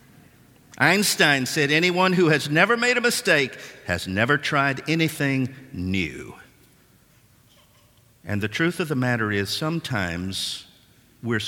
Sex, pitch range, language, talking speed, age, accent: male, 115-170 Hz, English, 120 wpm, 50-69, American